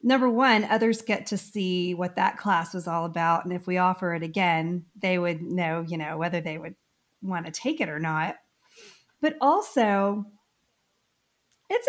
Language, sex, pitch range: English, female, 180-240 Hz